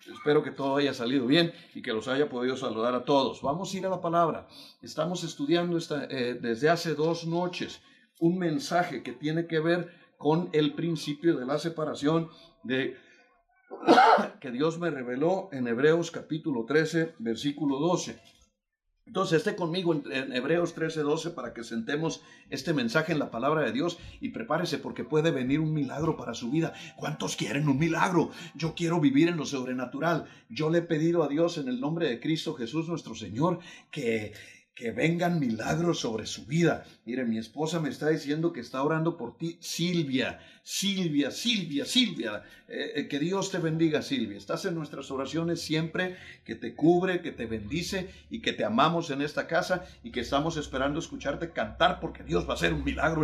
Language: Spanish